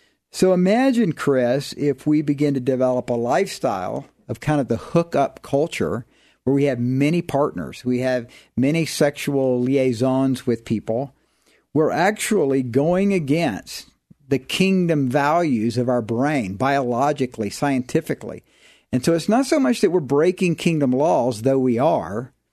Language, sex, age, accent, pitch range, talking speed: English, male, 50-69, American, 125-160 Hz, 145 wpm